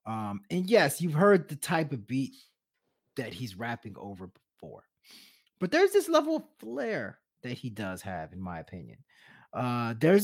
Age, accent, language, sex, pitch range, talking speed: 30-49, American, English, male, 150-225 Hz, 170 wpm